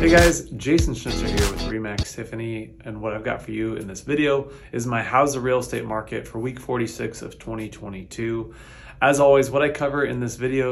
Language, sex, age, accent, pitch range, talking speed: English, male, 30-49, American, 105-130 Hz, 205 wpm